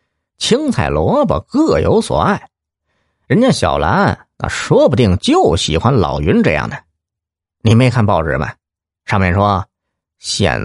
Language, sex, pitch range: Chinese, male, 85-135 Hz